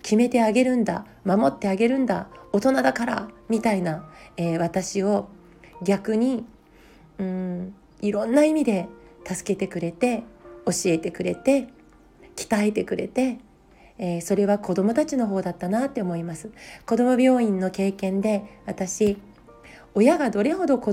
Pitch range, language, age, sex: 190-240 Hz, Japanese, 40-59, female